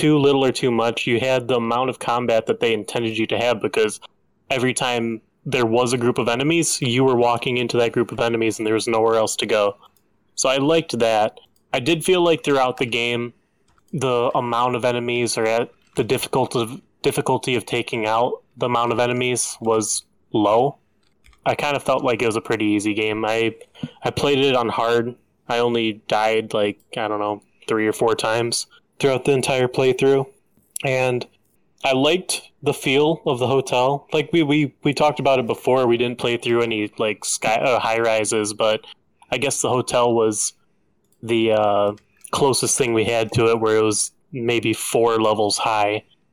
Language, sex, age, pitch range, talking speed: English, male, 20-39, 110-135 Hz, 195 wpm